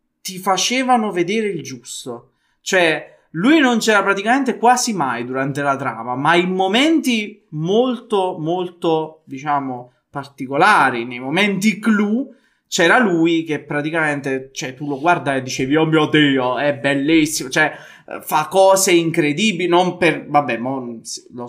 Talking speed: 135 wpm